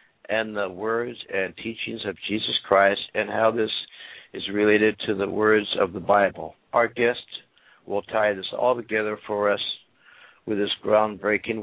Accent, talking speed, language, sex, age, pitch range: American, 160 wpm, English, male, 60-79, 105-115 Hz